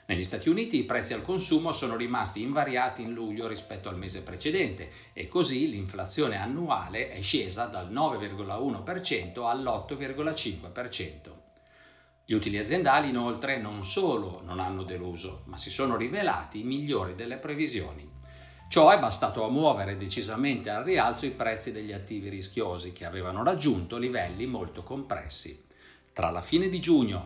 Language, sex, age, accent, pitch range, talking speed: Italian, male, 50-69, native, 90-125 Hz, 145 wpm